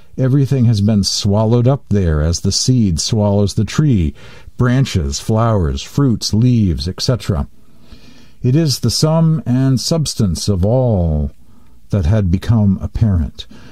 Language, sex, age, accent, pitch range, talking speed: English, male, 50-69, American, 95-125 Hz, 125 wpm